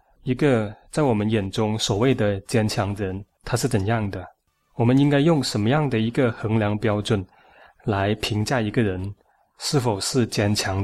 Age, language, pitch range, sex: 20-39, Chinese, 105-130 Hz, male